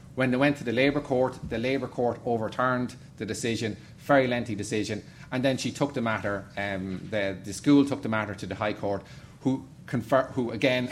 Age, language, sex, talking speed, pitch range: 30-49, English, male, 205 wpm, 105-135 Hz